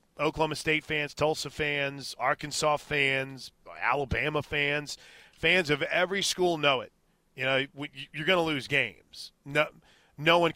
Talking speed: 140 wpm